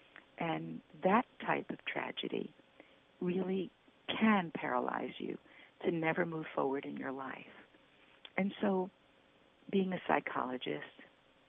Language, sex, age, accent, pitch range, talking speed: English, female, 50-69, American, 140-195 Hz, 110 wpm